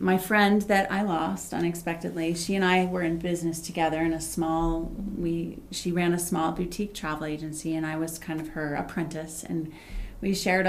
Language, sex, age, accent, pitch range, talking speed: English, female, 30-49, American, 155-180 Hz, 190 wpm